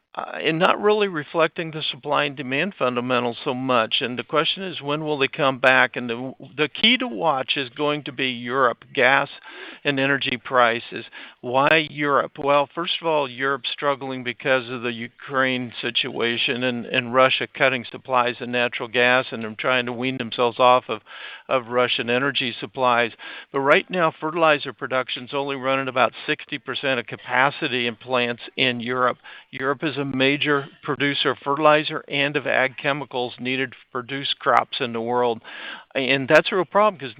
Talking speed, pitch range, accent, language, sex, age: 175 wpm, 125-150 Hz, American, English, male, 60-79